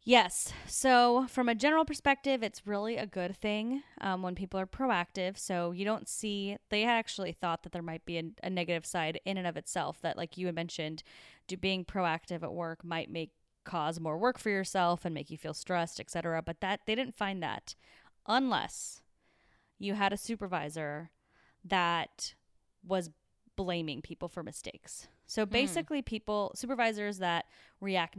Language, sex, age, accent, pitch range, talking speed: English, female, 20-39, American, 170-210 Hz, 175 wpm